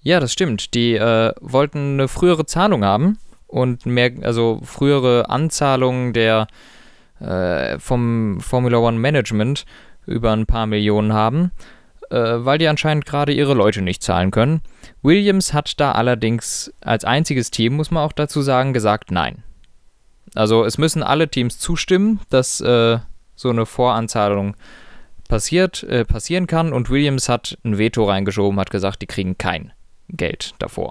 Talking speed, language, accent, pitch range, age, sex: 150 wpm, German, German, 110-145 Hz, 20-39, male